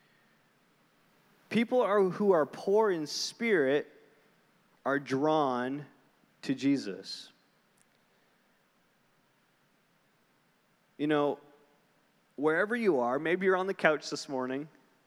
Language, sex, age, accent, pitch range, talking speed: English, male, 30-49, American, 135-190 Hz, 90 wpm